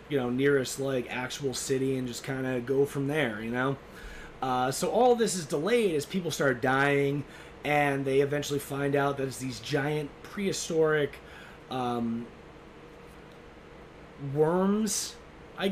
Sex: male